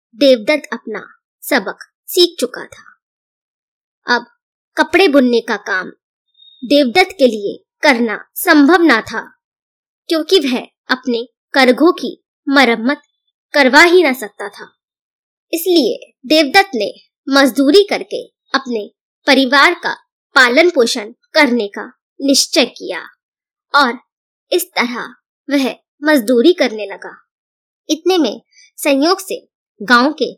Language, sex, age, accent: Hindi, male, 20-39, native